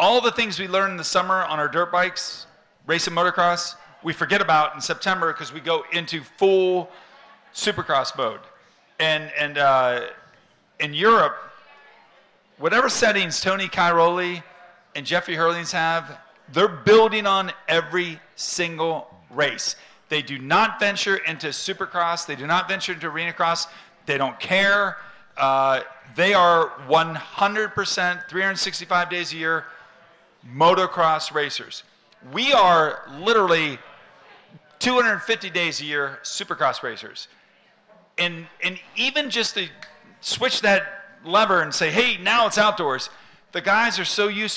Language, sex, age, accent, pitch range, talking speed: English, male, 40-59, American, 160-195 Hz, 130 wpm